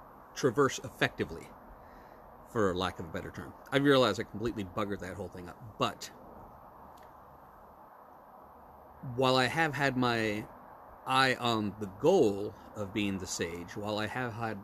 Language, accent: English, American